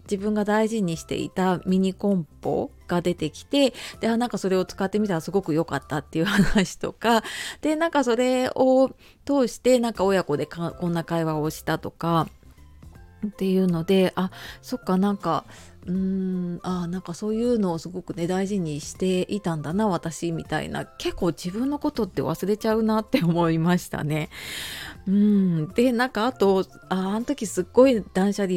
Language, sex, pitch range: Japanese, female, 165-225 Hz